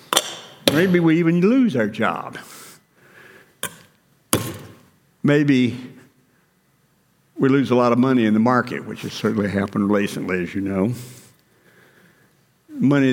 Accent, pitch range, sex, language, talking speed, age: American, 115-145 Hz, male, English, 115 wpm, 60-79